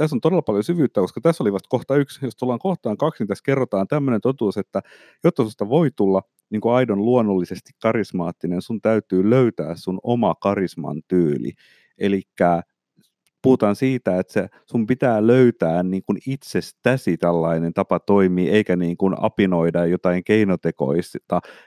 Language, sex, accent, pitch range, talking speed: Finnish, male, native, 90-125 Hz, 160 wpm